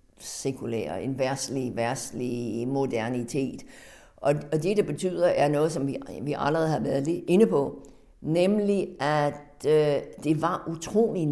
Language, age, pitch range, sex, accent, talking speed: Danish, 60-79, 145-205 Hz, female, native, 125 wpm